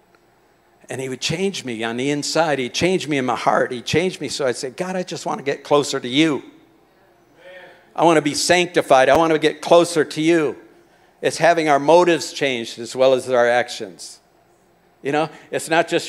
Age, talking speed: 50-69, 210 wpm